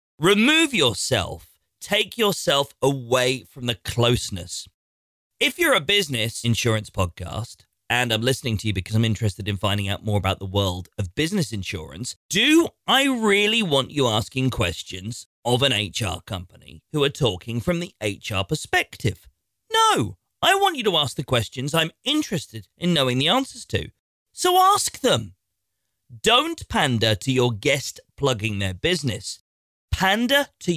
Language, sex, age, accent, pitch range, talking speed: English, male, 40-59, British, 100-170 Hz, 150 wpm